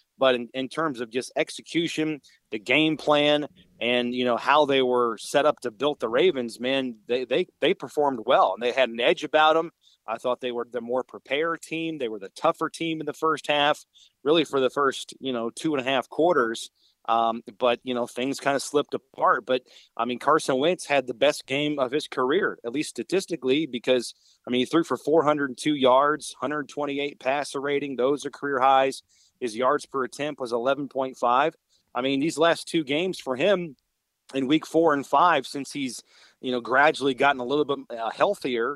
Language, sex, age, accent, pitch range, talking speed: English, male, 30-49, American, 125-150 Hz, 205 wpm